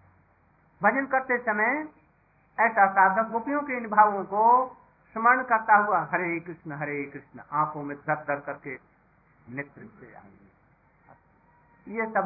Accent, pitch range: native, 170-215 Hz